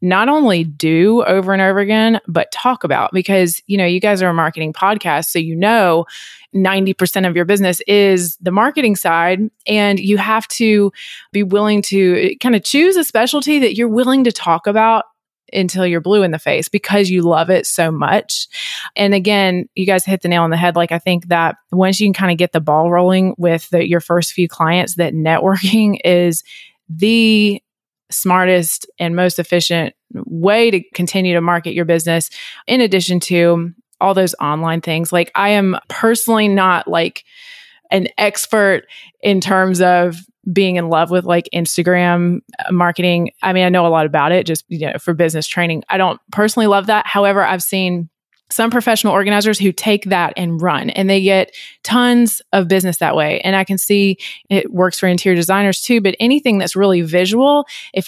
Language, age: English, 20-39